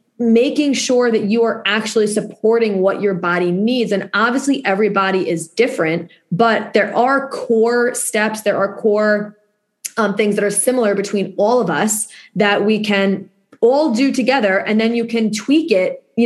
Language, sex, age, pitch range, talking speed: English, female, 20-39, 190-230 Hz, 170 wpm